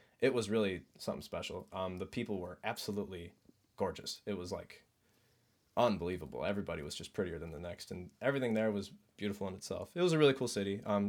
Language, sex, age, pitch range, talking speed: English, male, 20-39, 95-110 Hz, 195 wpm